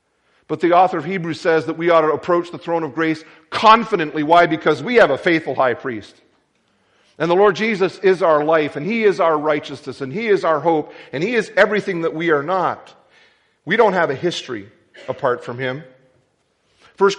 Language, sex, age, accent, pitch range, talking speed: English, male, 40-59, American, 145-170 Hz, 205 wpm